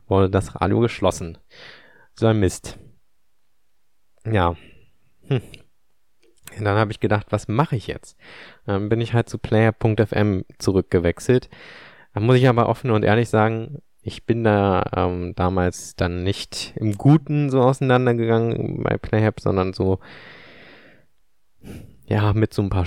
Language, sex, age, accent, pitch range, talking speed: German, male, 20-39, German, 95-115 Hz, 135 wpm